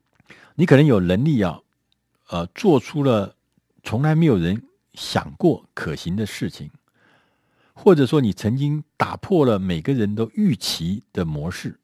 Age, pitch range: 50-69, 90-130 Hz